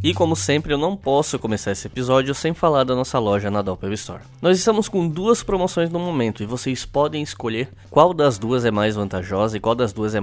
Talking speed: 230 wpm